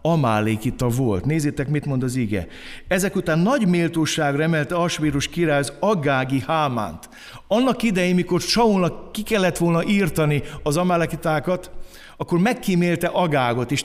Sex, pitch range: male, 130-180 Hz